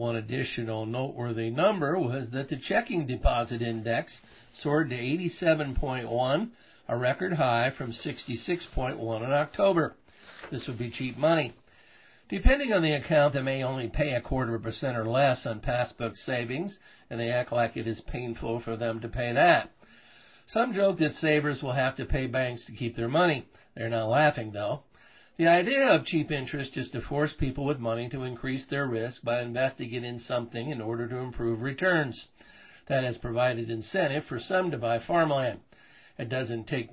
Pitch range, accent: 115-145 Hz, American